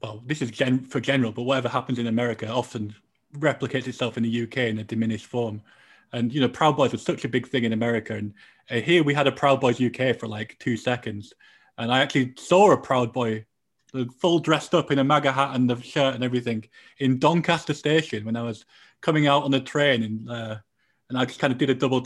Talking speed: 235 wpm